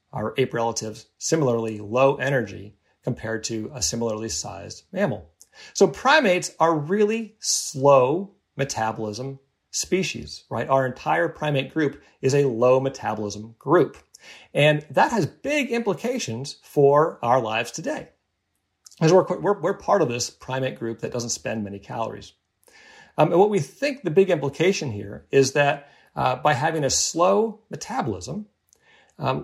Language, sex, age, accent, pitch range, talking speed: English, male, 40-59, American, 120-155 Hz, 145 wpm